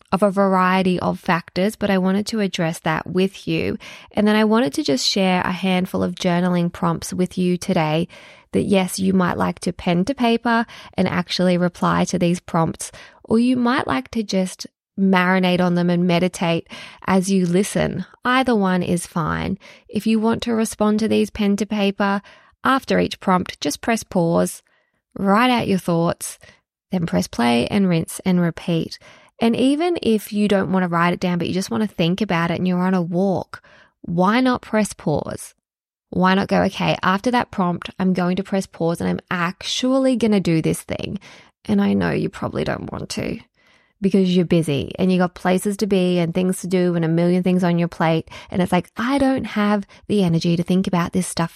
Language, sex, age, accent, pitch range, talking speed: English, female, 20-39, Australian, 175-205 Hz, 205 wpm